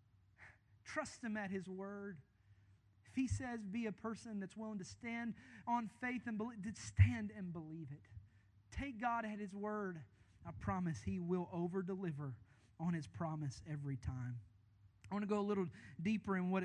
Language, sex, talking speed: English, male, 175 wpm